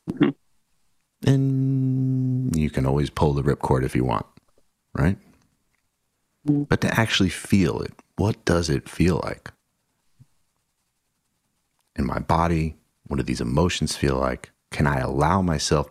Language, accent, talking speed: English, American, 130 wpm